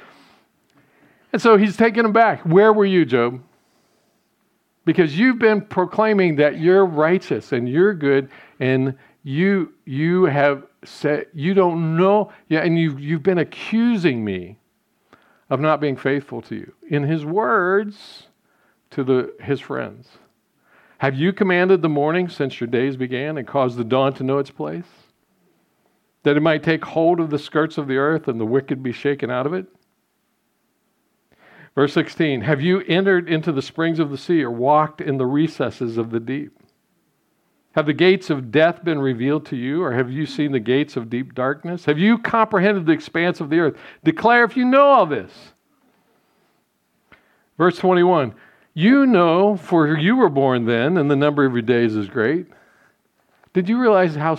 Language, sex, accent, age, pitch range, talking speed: English, male, American, 50-69, 135-185 Hz, 170 wpm